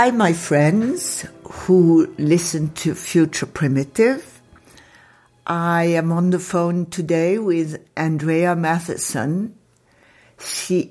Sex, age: female, 60-79